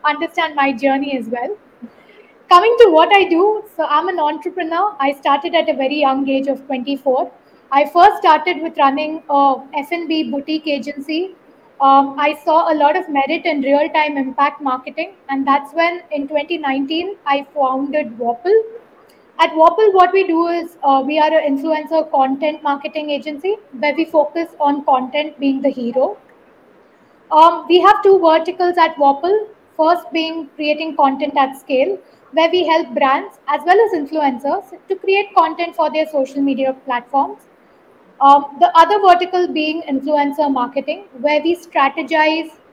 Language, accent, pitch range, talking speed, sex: Hindi, native, 275-340 Hz, 160 wpm, female